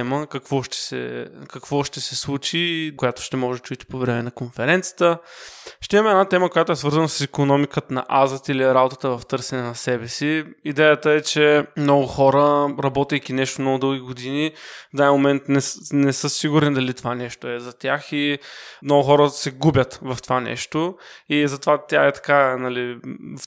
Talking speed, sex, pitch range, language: 185 wpm, male, 130-150 Hz, Bulgarian